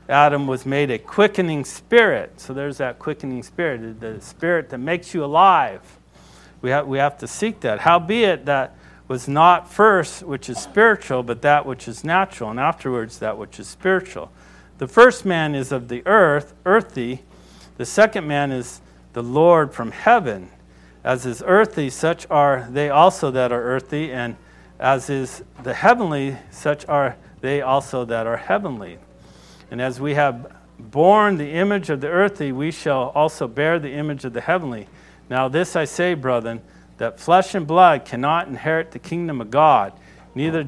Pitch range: 120-165 Hz